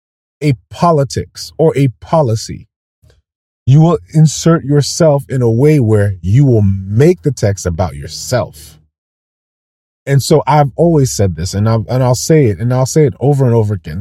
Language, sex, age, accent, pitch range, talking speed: English, male, 30-49, American, 95-135 Hz, 170 wpm